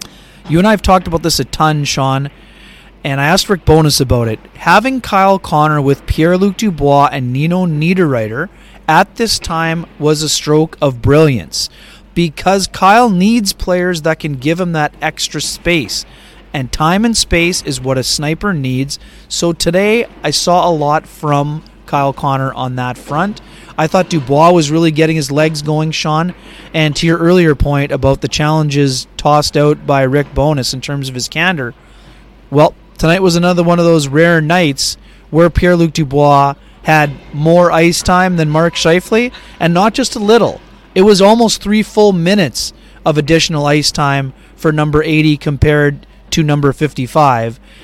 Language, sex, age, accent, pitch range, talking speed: English, male, 30-49, American, 145-175 Hz, 170 wpm